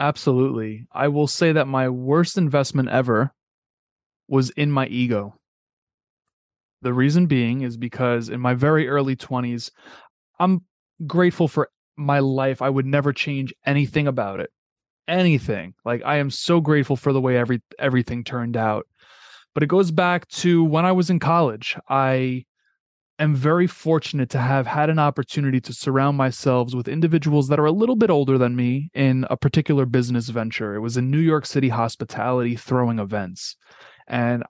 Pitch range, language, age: 125-150 Hz, English, 20-39